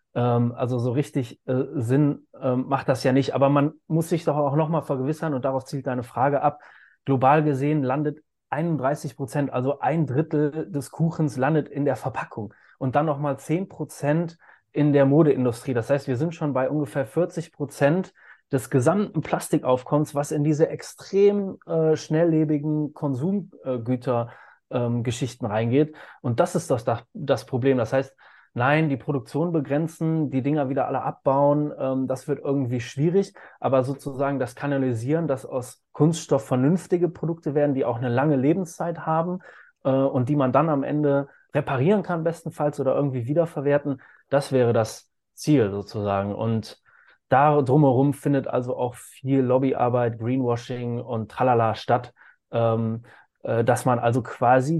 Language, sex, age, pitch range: German, male, 30-49, 130-155 Hz